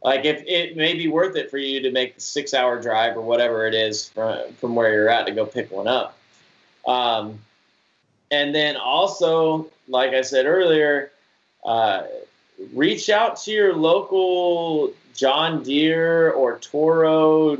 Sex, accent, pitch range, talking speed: male, American, 125-170 Hz, 160 wpm